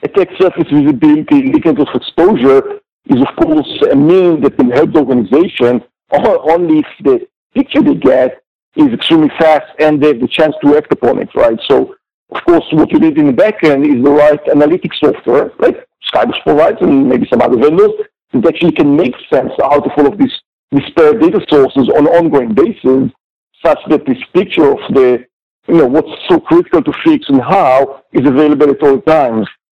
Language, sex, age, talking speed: English, male, 50-69, 195 wpm